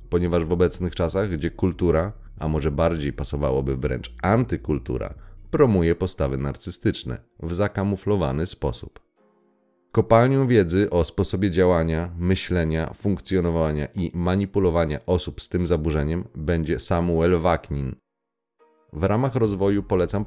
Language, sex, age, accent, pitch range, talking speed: Polish, male, 30-49, native, 80-100 Hz, 115 wpm